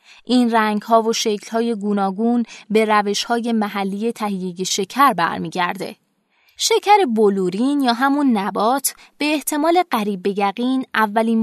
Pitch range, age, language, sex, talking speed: 200-260 Hz, 20-39, Persian, female, 125 wpm